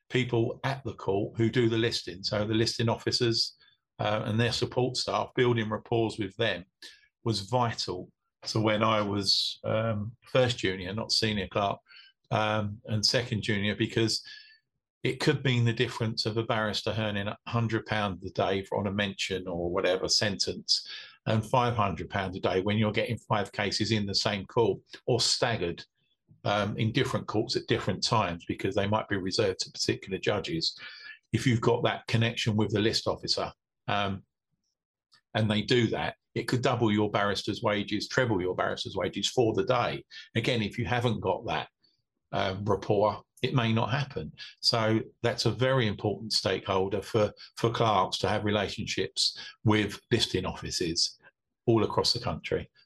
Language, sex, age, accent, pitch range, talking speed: English, male, 50-69, British, 105-125 Hz, 165 wpm